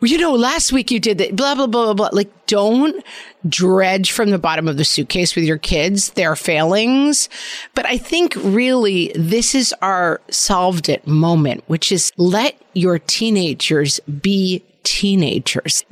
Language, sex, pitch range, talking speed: English, female, 180-245 Hz, 160 wpm